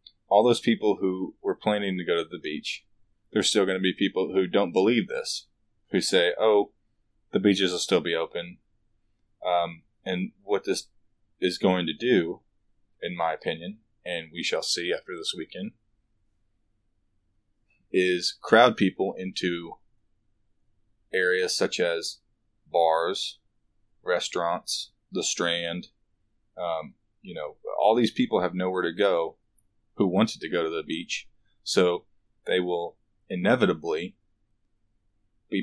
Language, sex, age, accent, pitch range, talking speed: English, male, 20-39, American, 90-110 Hz, 135 wpm